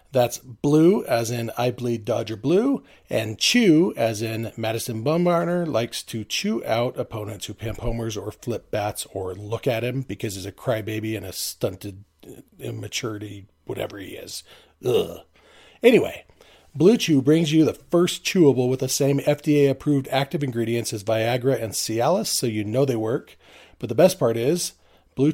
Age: 40-59